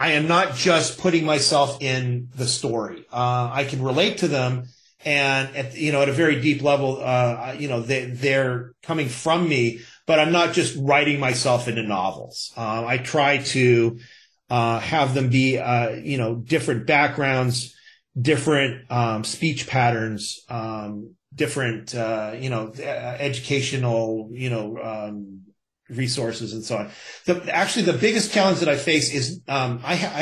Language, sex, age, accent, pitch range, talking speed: English, male, 30-49, American, 120-155 Hz, 165 wpm